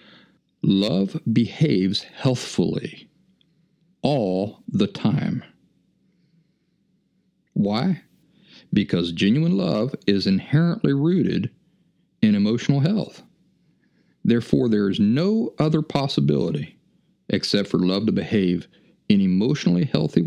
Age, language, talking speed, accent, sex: 50-69, English, 90 wpm, American, male